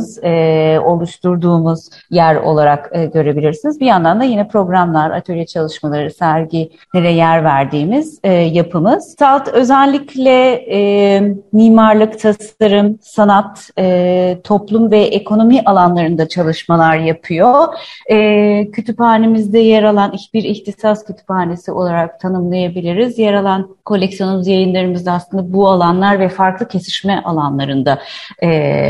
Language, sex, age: Turkish, female, 30-49